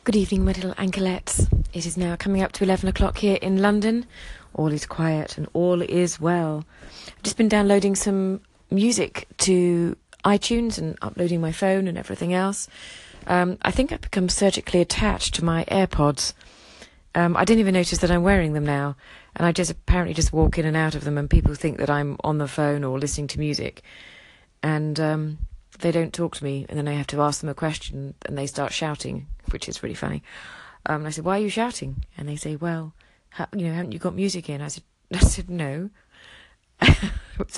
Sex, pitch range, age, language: female, 150-185 Hz, 30-49, English